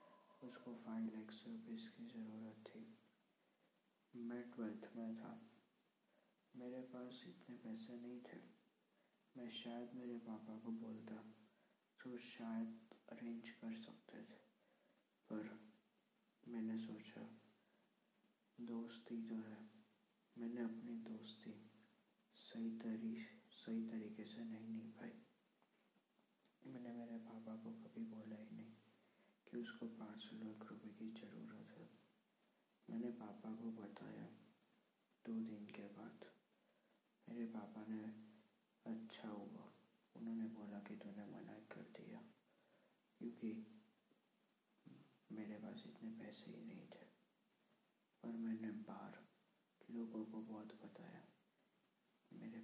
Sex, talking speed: male, 110 wpm